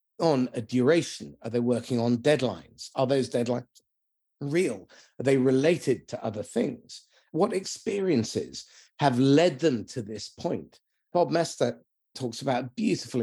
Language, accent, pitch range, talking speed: English, British, 125-165 Hz, 145 wpm